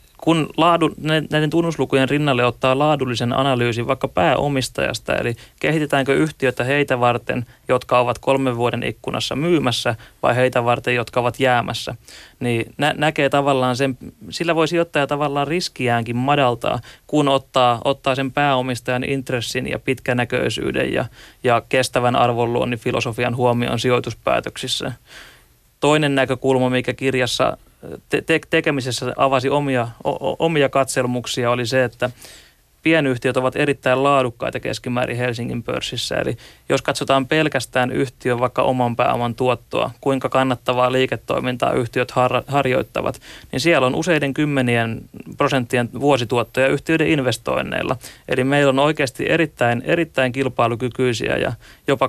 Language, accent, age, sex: Finnish, native, 30-49, male